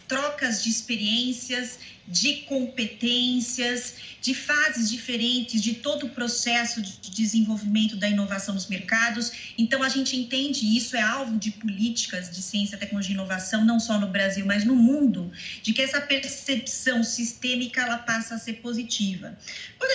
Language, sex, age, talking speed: Portuguese, female, 40-59, 150 wpm